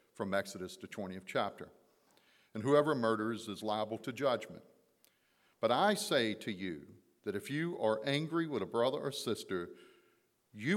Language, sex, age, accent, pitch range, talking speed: English, male, 50-69, American, 100-135 Hz, 155 wpm